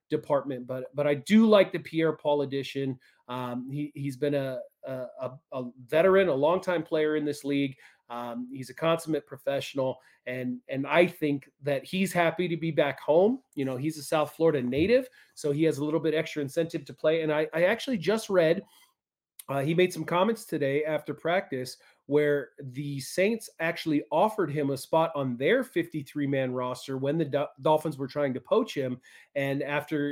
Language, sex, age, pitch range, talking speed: English, male, 30-49, 140-170 Hz, 185 wpm